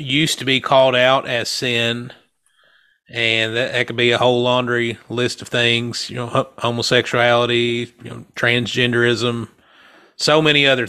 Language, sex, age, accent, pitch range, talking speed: English, male, 30-49, American, 120-140 Hz, 140 wpm